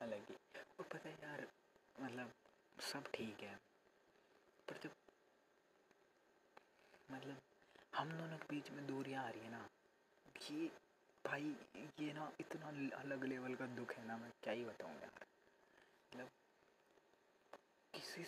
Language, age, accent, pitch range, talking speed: Hindi, 30-49, native, 120-155 Hz, 130 wpm